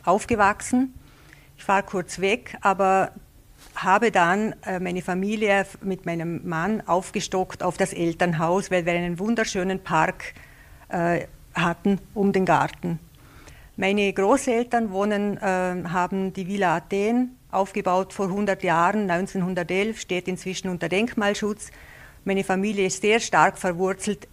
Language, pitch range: German, 180-205 Hz